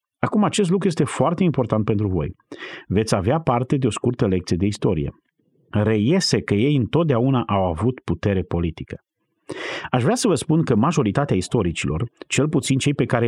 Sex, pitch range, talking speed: male, 100-140 Hz, 170 wpm